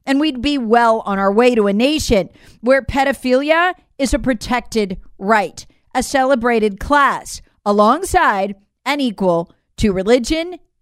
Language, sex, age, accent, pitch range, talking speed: English, female, 40-59, American, 210-285 Hz, 135 wpm